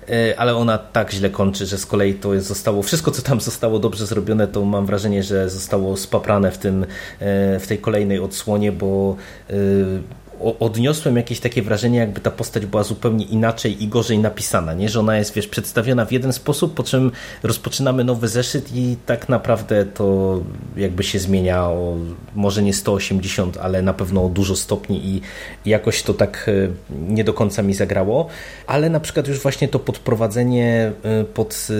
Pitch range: 100-115 Hz